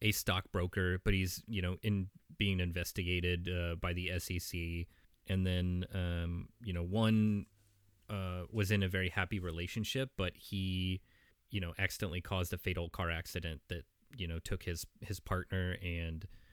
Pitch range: 85-100 Hz